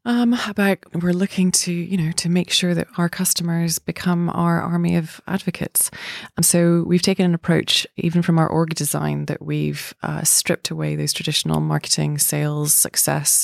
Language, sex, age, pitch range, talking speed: English, female, 20-39, 155-180 Hz, 175 wpm